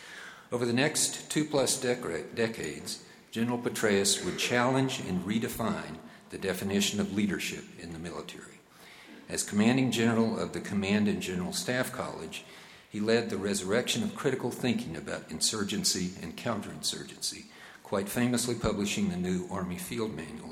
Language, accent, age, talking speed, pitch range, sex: English, American, 50-69, 140 wpm, 100-125 Hz, male